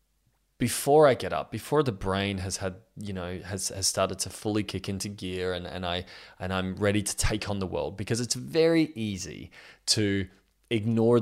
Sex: male